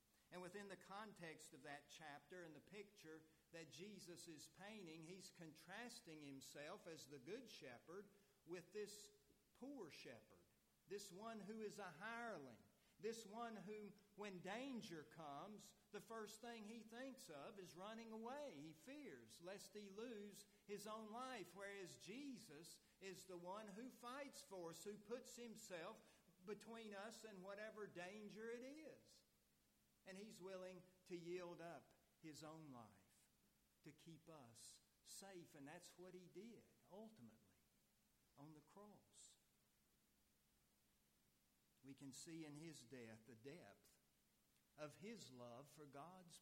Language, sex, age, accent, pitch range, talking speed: English, male, 50-69, American, 140-205 Hz, 140 wpm